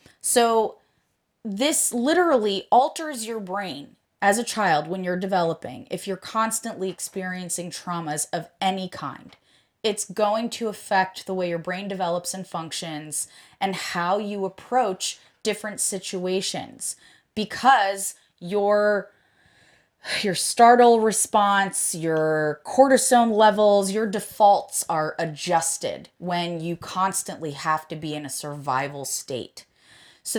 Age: 20-39